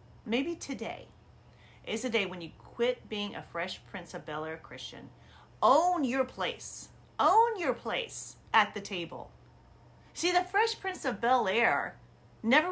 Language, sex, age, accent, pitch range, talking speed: English, female, 40-59, American, 205-295 Hz, 145 wpm